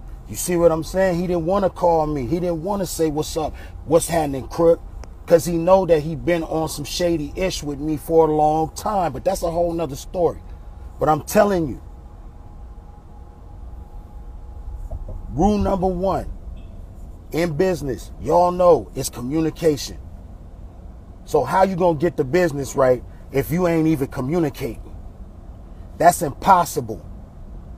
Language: English